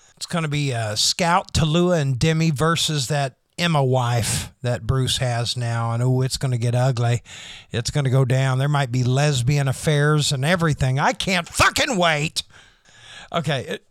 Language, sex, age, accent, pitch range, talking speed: English, male, 50-69, American, 135-185 Hz, 165 wpm